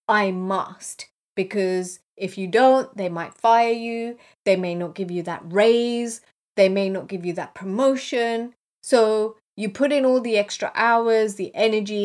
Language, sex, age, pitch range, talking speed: English, female, 30-49, 185-240 Hz, 170 wpm